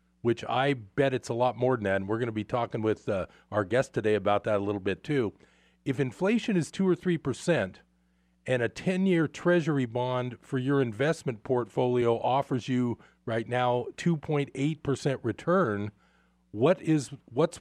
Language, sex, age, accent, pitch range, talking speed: English, male, 40-59, American, 115-150 Hz, 170 wpm